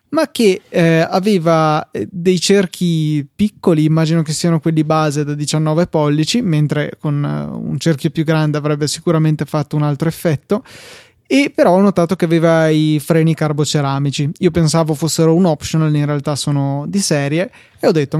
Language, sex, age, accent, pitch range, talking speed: Italian, male, 20-39, native, 155-180 Hz, 160 wpm